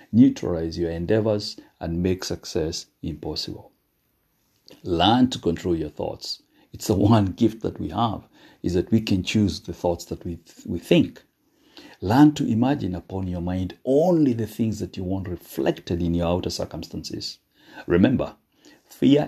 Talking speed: 155 wpm